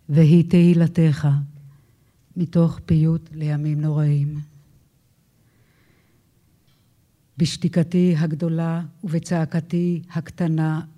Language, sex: Hebrew, female